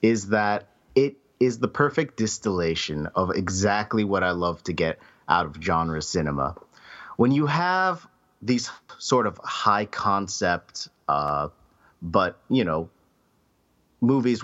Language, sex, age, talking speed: English, male, 30-49, 130 wpm